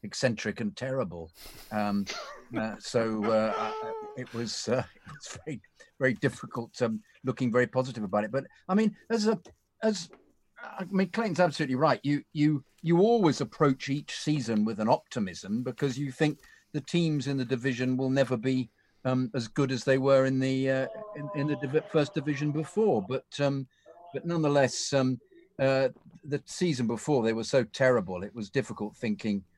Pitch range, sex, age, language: 115-155 Hz, male, 50-69, English